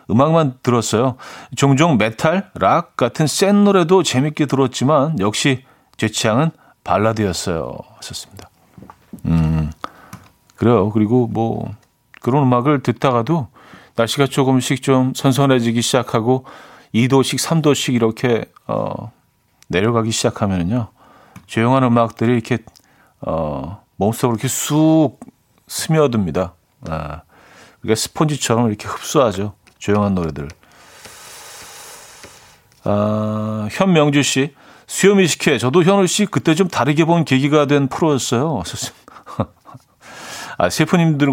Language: Korean